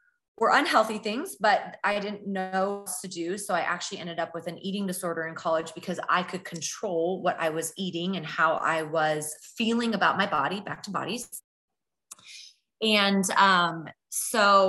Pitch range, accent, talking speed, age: 170-205 Hz, American, 175 wpm, 20-39